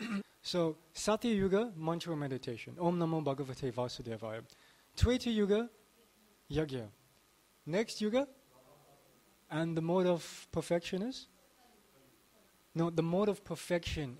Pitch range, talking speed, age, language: 135-180 Hz, 100 wpm, 20-39, English